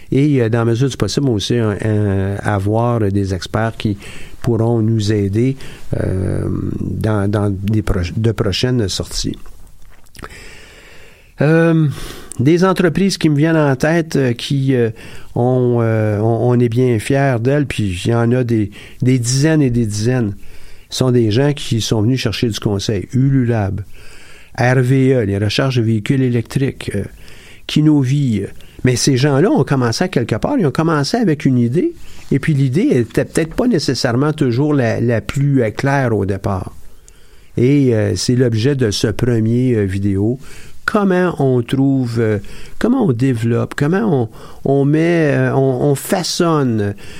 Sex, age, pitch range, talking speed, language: male, 50-69, 105-135 Hz, 160 wpm, French